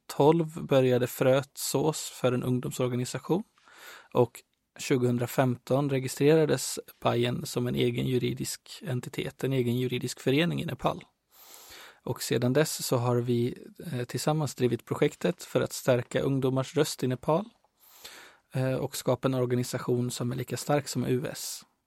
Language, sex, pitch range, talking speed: Swedish, male, 120-140 Hz, 125 wpm